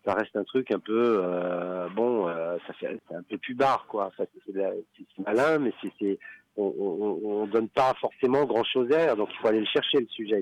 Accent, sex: French, male